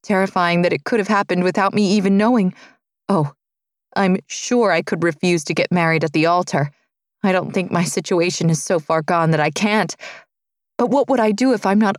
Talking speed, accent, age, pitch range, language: 210 wpm, American, 20-39, 165-205 Hz, English